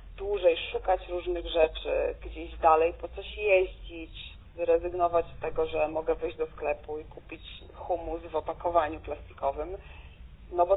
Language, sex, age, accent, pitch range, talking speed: Polish, female, 30-49, native, 165-195 Hz, 140 wpm